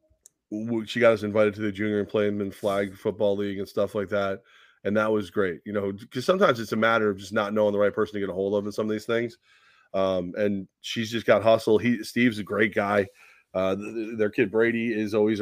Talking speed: 250 wpm